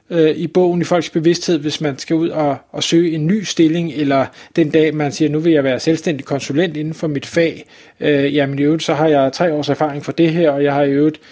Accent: native